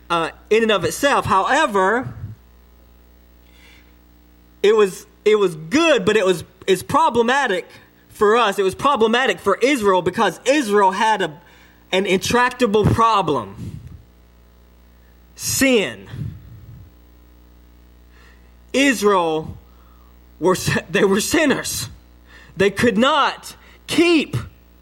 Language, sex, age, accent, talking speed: English, male, 20-39, American, 95 wpm